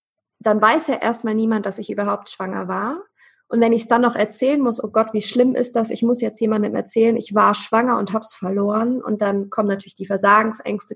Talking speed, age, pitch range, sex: 230 wpm, 20-39, 205-245 Hz, female